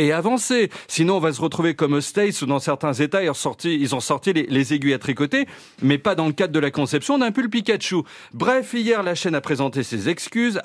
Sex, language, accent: male, French, French